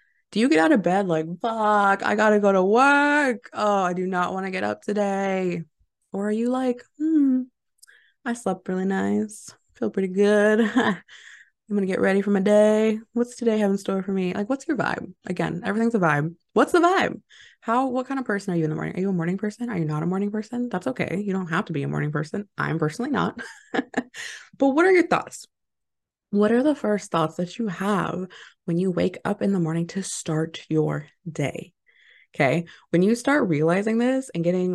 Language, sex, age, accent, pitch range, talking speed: English, female, 20-39, American, 160-220 Hz, 215 wpm